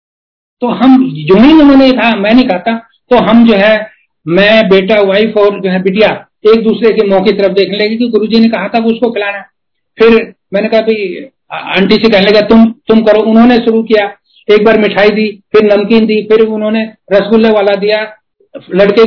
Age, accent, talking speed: 60-79, native, 200 wpm